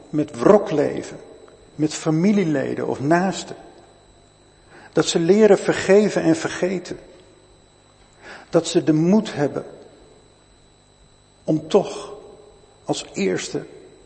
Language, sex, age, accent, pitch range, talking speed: Dutch, male, 50-69, Dutch, 145-185 Hz, 95 wpm